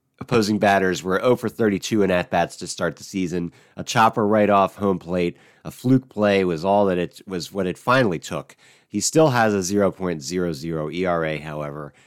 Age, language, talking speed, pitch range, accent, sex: 40-59, English, 190 wpm, 85-105 Hz, American, male